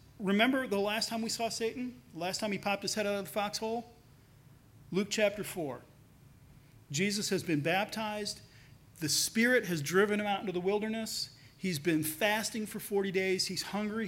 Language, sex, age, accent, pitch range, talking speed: English, male, 40-59, American, 140-225 Hz, 175 wpm